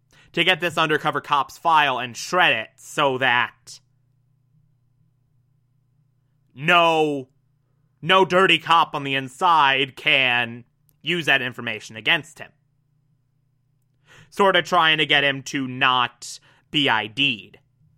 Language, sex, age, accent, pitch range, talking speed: English, male, 20-39, American, 135-160 Hz, 115 wpm